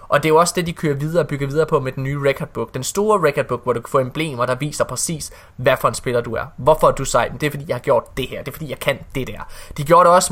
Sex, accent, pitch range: male, native, 125-170 Hz